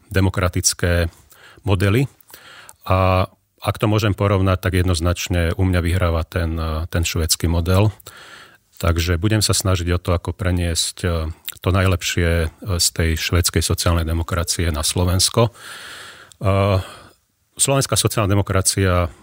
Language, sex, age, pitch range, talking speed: Slovak, male, 40-59, 90-100 Hz, 110 wpm